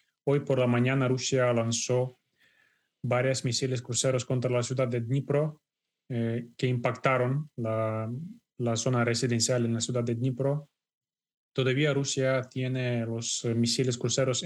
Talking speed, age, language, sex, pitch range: 135 wpm, 20-39, Spanish, male, 125-140 Hz